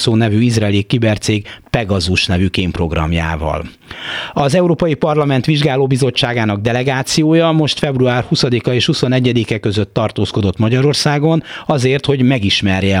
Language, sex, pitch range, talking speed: Hungarian, male, 100-140 Hz, 105 wpm